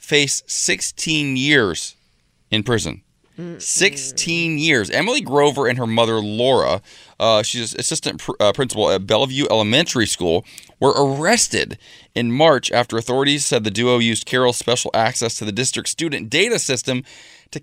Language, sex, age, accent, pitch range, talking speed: English, male, 20-39, American, 105-140 Hz, 145 wpm